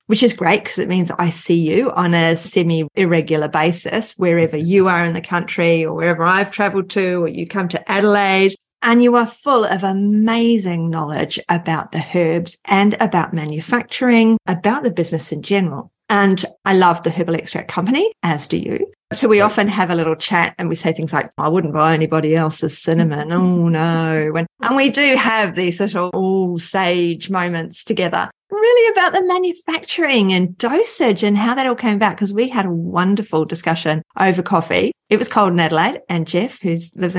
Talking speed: 185 wpm